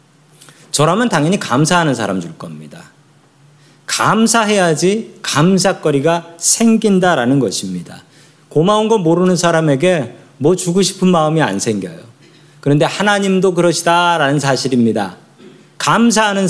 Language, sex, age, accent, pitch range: Korean, male, 40-59, native, 145-190 Hz